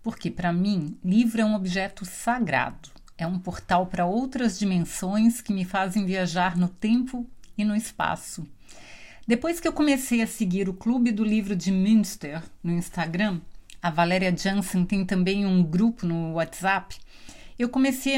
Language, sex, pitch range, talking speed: Portuguese, female, 180-240 Hz, 160 wpm